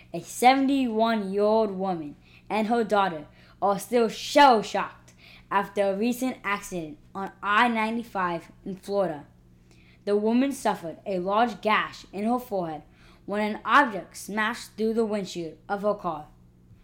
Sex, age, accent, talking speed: female, 20-39, American, 130 wpm